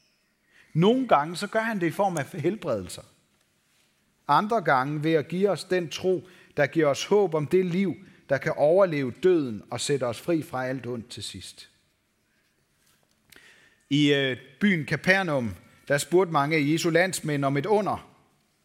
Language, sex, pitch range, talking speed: Danish, male, 130-185 Hz, 165 wpm